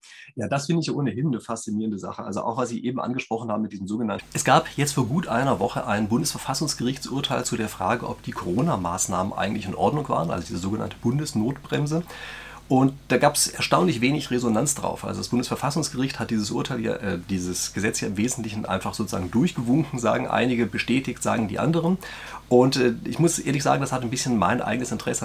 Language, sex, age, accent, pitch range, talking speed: German, male, 30-49, German, 115-140 Hz, 195 wpm